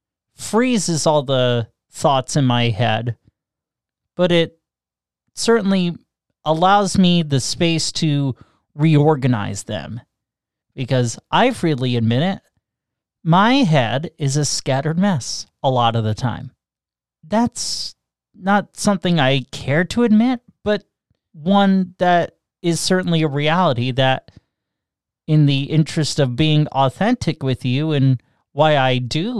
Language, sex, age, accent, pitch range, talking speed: English, male, 30-49, American, 125-170 Hz, 120 wpm